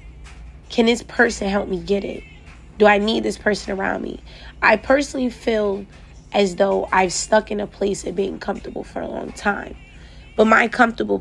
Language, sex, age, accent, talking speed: English, female, 20-39, American, 180 wpm